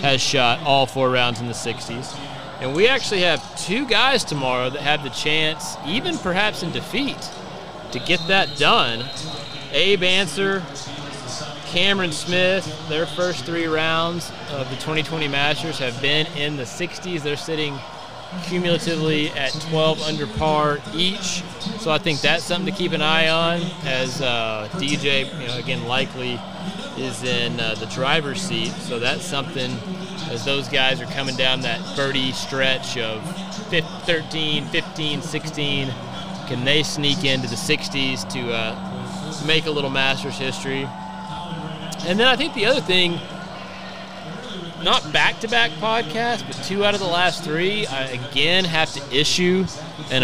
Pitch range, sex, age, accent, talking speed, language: 140-175 Hz, male, 30-49, American, 150 wpm, English